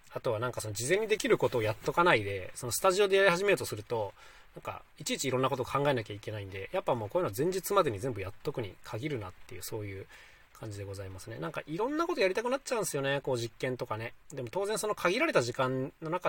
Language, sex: Japanese, male